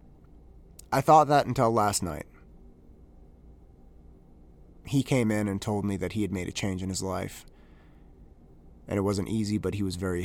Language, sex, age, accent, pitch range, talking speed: English, male, 30-49, American, 80-110 Hz, 170 wpm